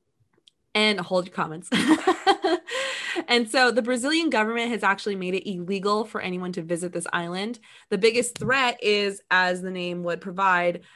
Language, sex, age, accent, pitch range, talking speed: English, female, 20-39, American, 180-215 Hz, 160 wpm